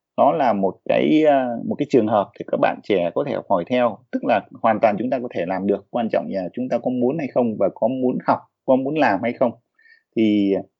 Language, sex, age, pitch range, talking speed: Vietnamese, male, 30-49, 95-120 Hz, 250 wpm